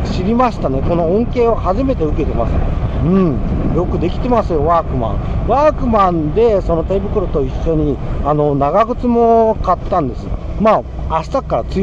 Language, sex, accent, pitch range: Japanese, male, native, 140-225 Hz